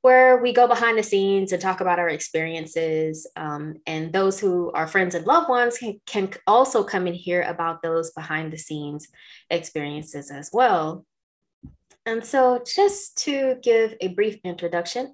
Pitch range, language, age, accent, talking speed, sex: 170-240 Hz, English, 20-39, American, 165 wpm, female